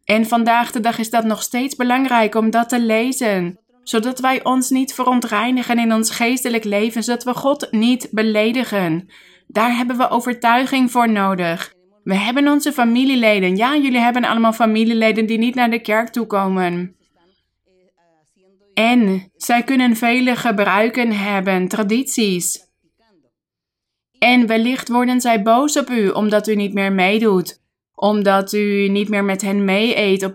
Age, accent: 20-39, Dutch